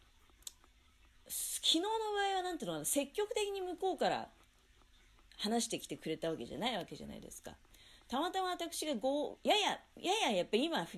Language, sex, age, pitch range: Japanese, female, 40-59, 160-255 Hz